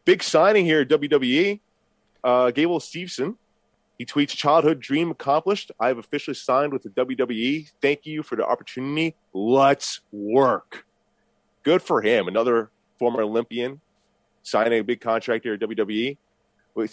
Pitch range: 115-145 Hz